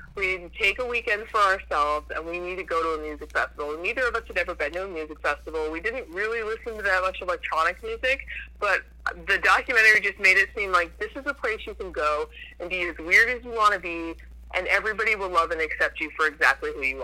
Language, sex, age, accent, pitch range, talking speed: English, female, 30-49, American, 170-255 Hz, 245 wpm